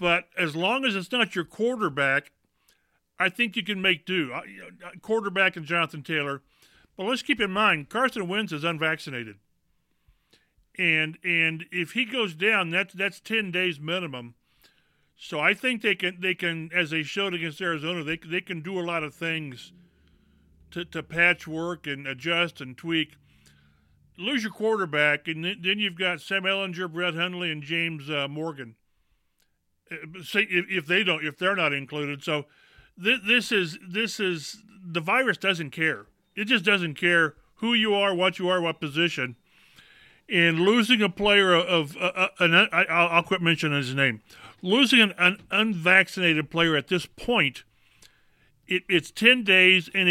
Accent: American